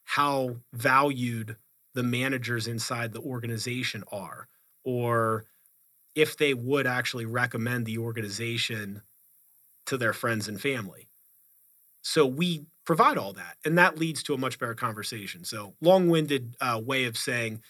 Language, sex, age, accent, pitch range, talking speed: English, male, 30-49, American, 115-140 Hz, 140 wpm